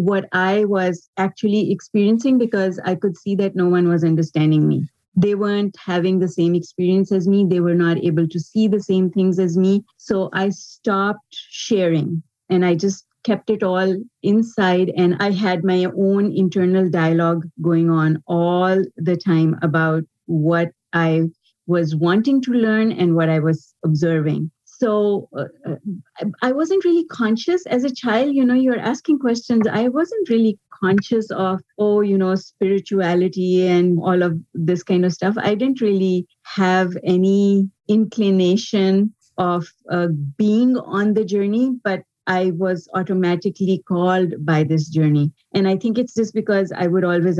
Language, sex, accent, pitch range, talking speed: English, female, Indian, 170-205 Hz, 165 wpm